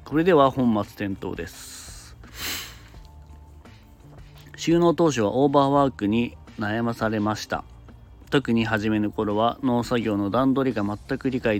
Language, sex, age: Japanese, male, 40-59